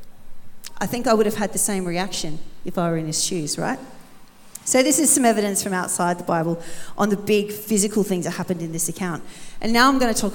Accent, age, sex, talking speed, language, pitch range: Australian, 40-59, female, 230 wpm, English, 185-225 Hz